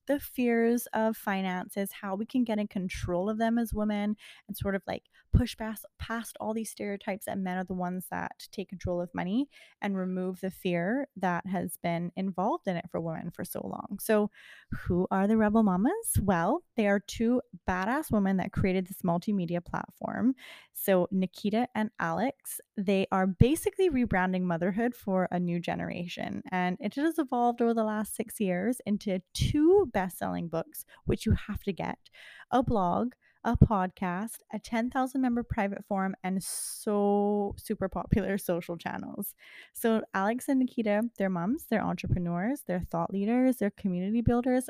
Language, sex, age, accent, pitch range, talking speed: English, female, 20-39, American, 185-235 Hz, 170 wpm